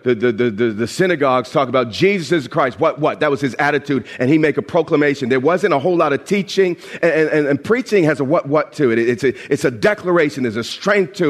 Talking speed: 250 wpm